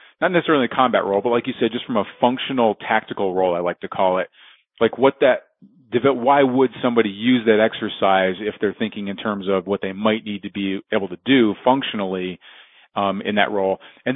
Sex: male